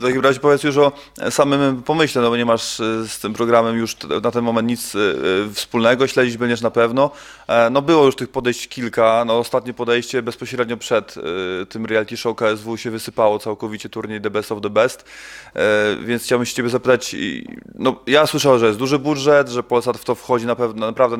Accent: native